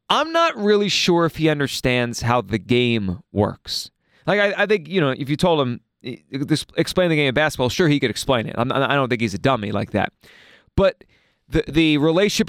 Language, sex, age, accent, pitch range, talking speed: English, male, 30-49, American, 120-160 Hz, 225 wpm